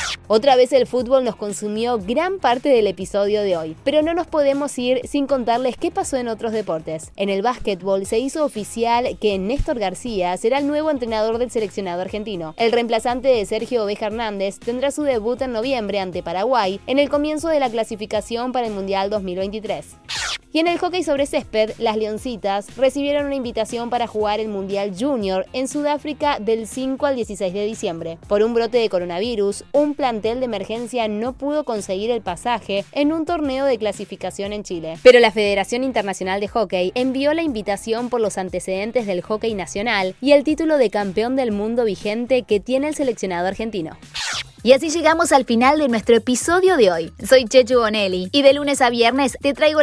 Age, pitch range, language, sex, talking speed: 20-39, 205-270 Hz, Spanish, female, 190 wpm